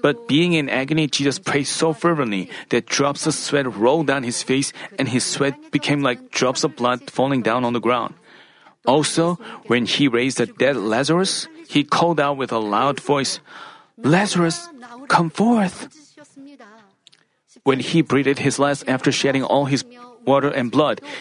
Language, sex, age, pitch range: Korean, male, 40-59, 140-190 Hz